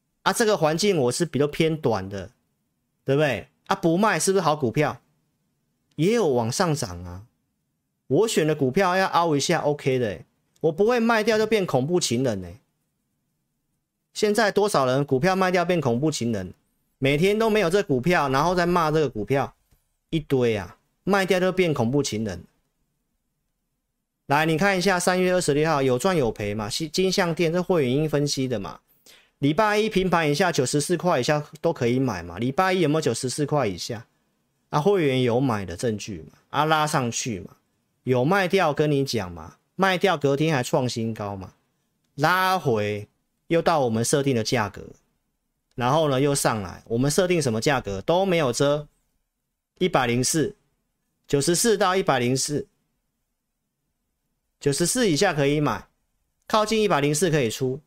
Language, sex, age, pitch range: Chinese, male, 40-59, 125-180 Hz